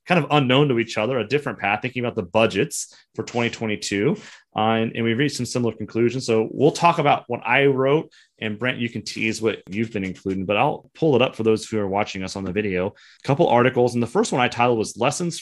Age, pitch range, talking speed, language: 30-49, 110-135 Hz, 250 wpm, English